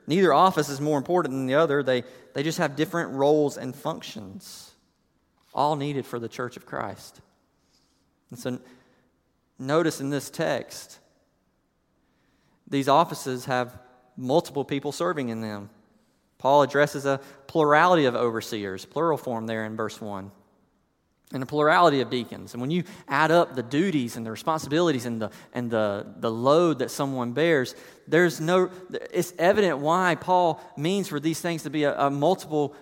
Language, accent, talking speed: English, American, 160 wpm